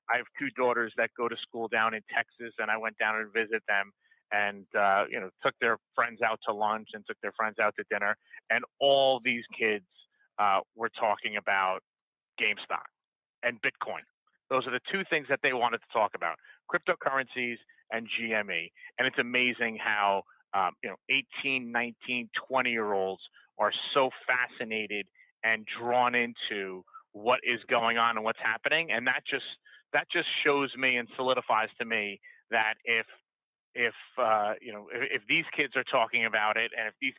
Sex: male